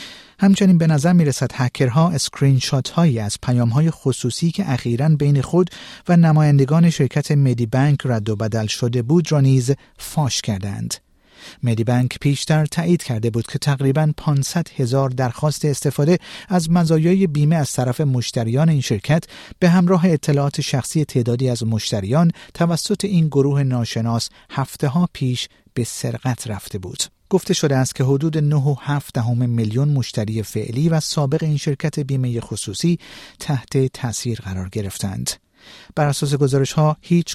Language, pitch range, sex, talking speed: Persian, 120-160 Hz, male, 150 wpm